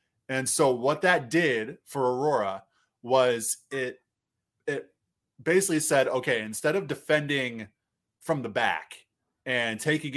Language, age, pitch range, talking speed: English, 20-39, 115-150 Hz, 125 wpm